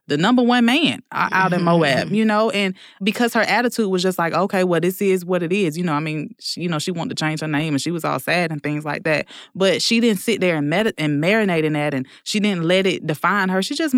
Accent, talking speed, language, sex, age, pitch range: American, 270 wpm, English, female, 20-39, 175-220 Hz